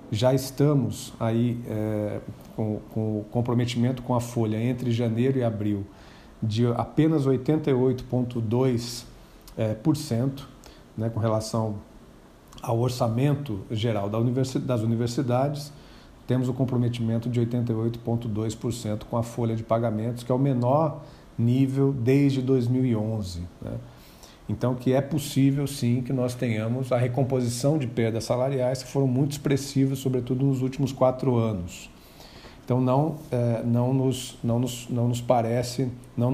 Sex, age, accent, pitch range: male, 50-69, Brazilian, 115-130 Hz